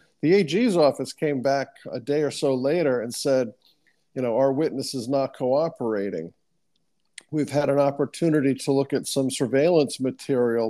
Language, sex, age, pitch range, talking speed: English, male, 50-69, 120-145 Hz, 165 wpm